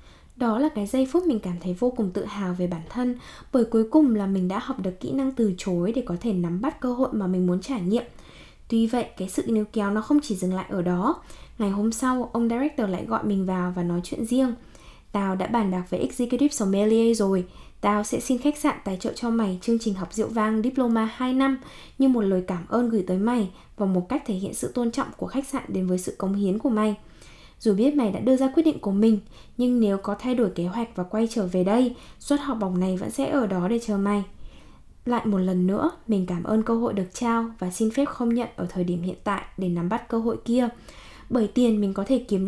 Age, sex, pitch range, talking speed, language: 10-29, female, 190-245 Hz, 255 wpm, Vietnamese